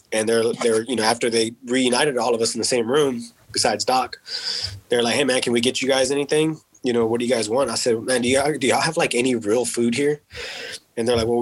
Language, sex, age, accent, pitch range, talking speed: English, male, 20-39, American, 120-140 Hz, 270 wpm